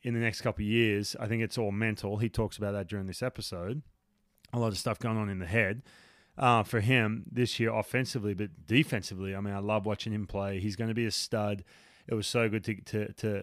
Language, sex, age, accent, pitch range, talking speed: English, male, 20-39, Australian, 100-125 Hz, 245 wpm